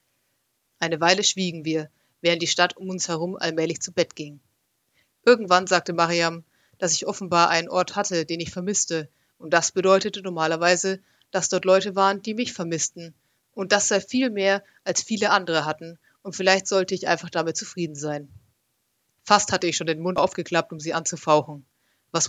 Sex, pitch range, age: female, 160-195 Hz, 30-49